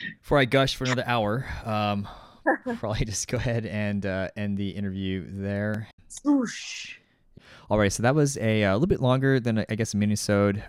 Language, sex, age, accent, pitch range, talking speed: English, male, 20-39, American, 90-105 Hz, 185 wpm